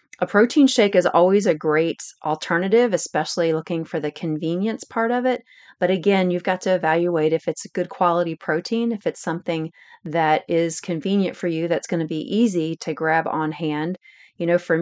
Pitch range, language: 160-190 Hz, English